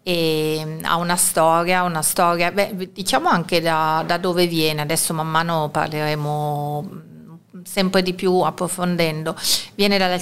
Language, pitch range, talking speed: Italian, 170-195 Hz, 135 wpm